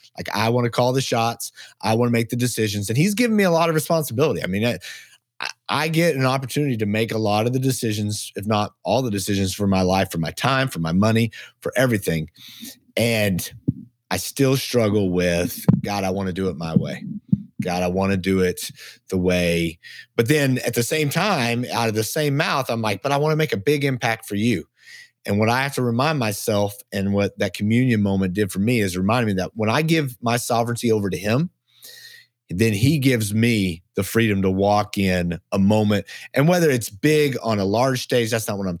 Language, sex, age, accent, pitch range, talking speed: English, male, 30-49, American, 95-125 Hz, 225 wpm